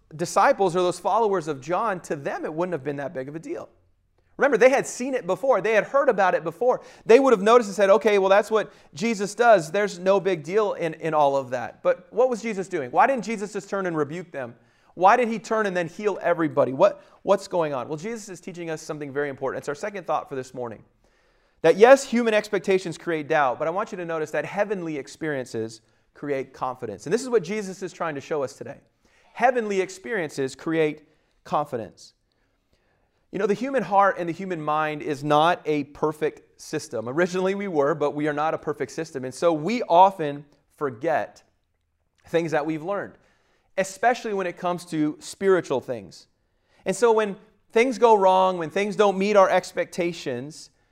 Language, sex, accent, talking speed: English, male, American, 205 wpm